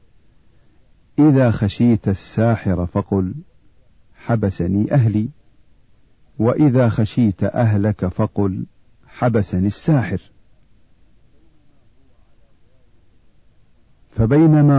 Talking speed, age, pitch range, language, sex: 55 wpm, 50-69, 100-125 Hz, Arabic, male